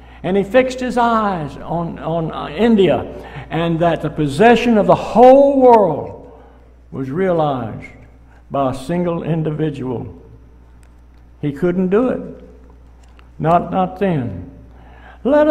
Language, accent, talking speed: English, American, 120 wpm